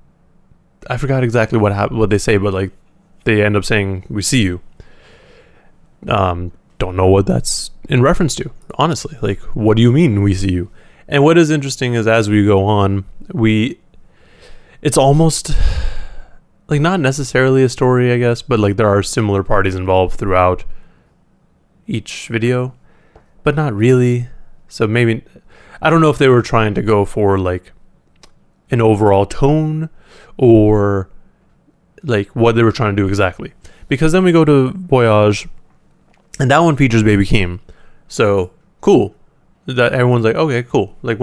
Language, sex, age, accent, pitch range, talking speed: English, male, 20-39, American, 100-130 Hz, 160 wpm